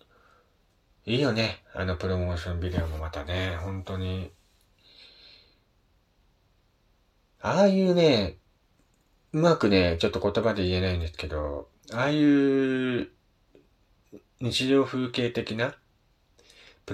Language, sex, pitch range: Japanese, male, 85-110 Hz